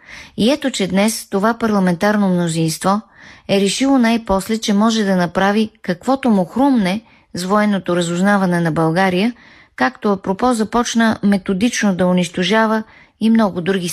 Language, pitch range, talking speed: Bulgarian, 180-220 Hz, 135 wpm